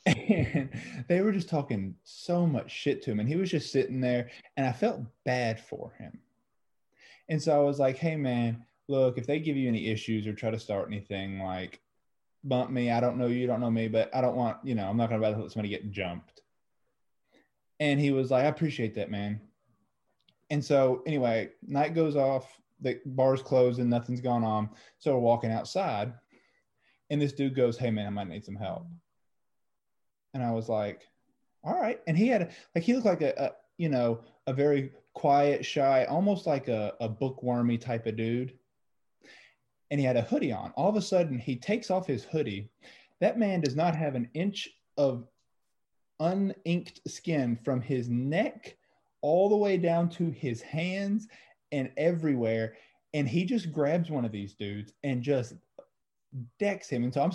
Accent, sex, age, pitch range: American, male, 20-39, 115-155 Hz